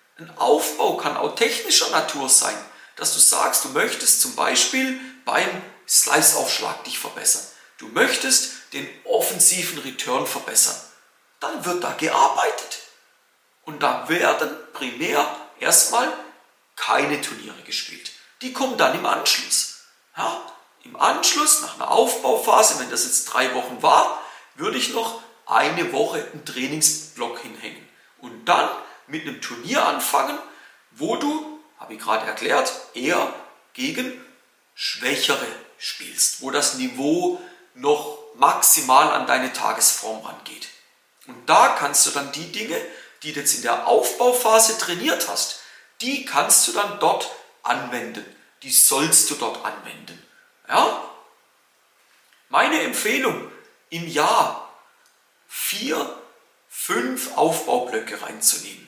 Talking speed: 120 wpm